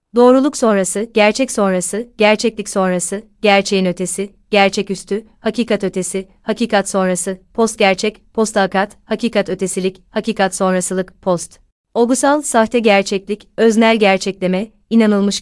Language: Turkish